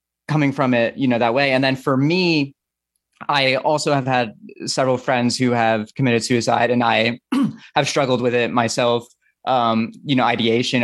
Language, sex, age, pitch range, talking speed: English, male, 20-39, 115-140 Hz, 175 wpm